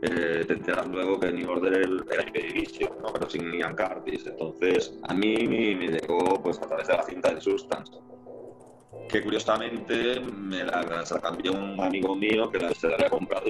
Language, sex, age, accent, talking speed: Spanish, male, 30-49, Spanish, 175 wpm